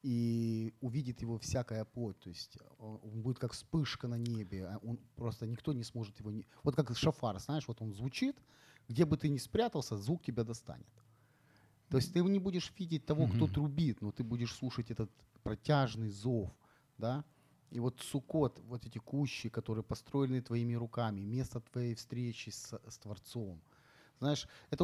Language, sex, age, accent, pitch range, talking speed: Ukrainian, male, 30-49, native, 110-135 Hz, 170 wpm